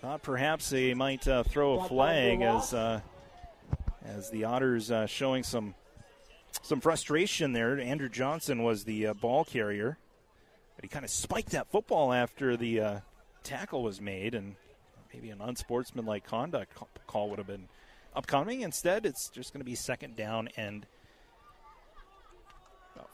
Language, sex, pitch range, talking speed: English, male, 115-160 Hz, 150 wpm